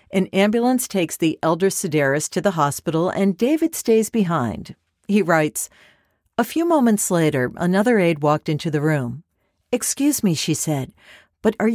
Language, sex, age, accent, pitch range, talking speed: English, female, 50-69, American, 155-220 Hz, 160 wpm